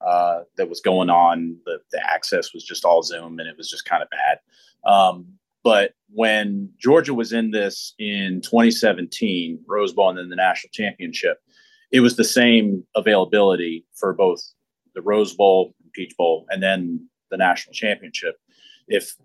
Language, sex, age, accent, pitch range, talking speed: English, male, 30-49, American, 95-115 Hz, 165 wpm